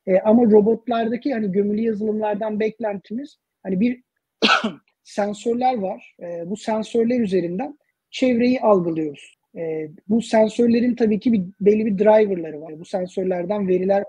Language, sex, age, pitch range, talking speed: Turkish, male, 40-59, 180-220 Hz, 115 wpm